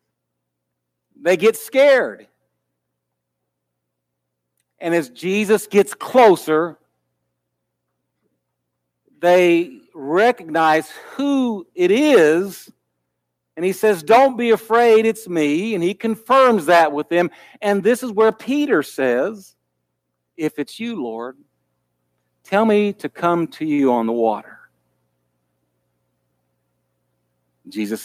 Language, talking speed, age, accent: English, 100 wpm, 60-79, American